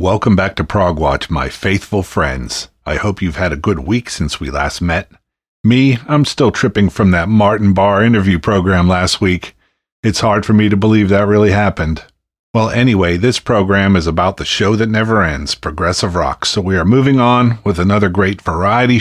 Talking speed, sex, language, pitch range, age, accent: 195 wpm, male, English, 90-110 Hz, 50-69, American